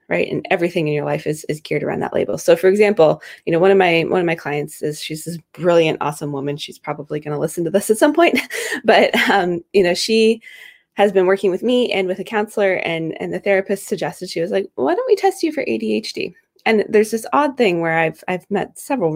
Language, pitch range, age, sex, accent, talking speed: English, 160-215 Hz, 20-39, female, American, 250 wpm